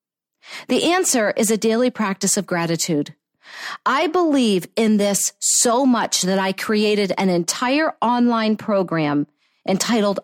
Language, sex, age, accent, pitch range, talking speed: English, female, 50-69, American, 180-255 Hz, 130 wpm